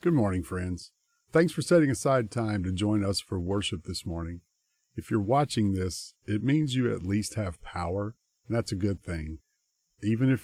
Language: English